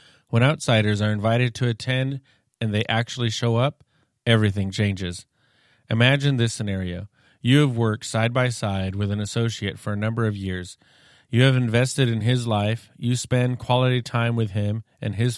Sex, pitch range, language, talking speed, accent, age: male, 110-125 Hz, English, 170 wpm, American, 30-49